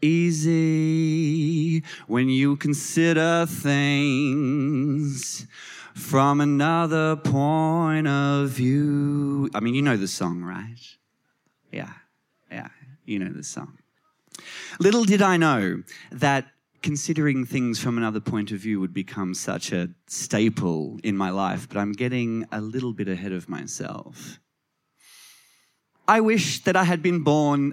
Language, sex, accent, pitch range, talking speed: English, male, Australian, 110-165 Hz, 130 wpm